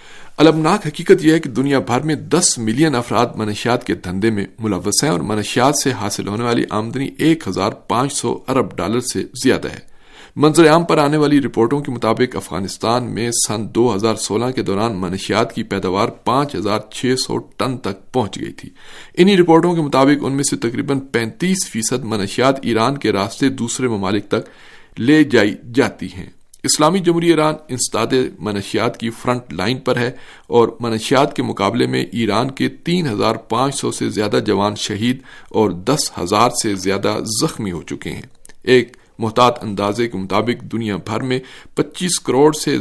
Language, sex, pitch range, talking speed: Urdu, male, 105-140 Hz, 170 wpm